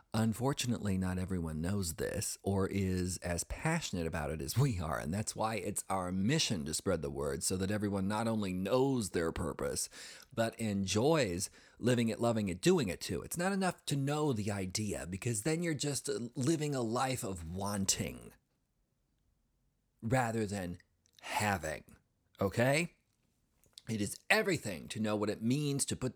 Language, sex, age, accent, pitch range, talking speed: English, male, 40-59, American, 100-135 Hz, 165 wpm